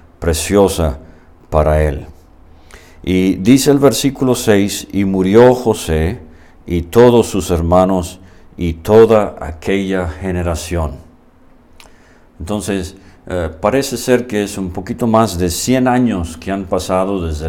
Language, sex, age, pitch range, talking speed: English, male, 50-69, 85-110 Hz, 120 wpm